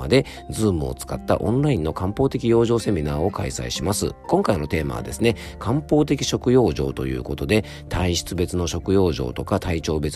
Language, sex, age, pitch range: Japanese, male, 40-59, 75-110 Hz